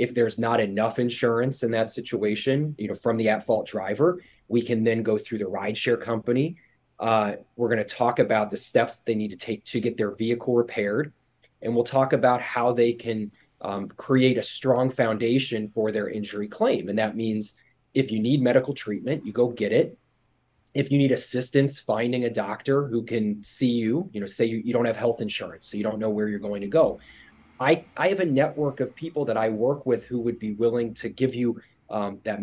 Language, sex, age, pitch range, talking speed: English, male, 30-49, 110-130 Hz, 215 wpm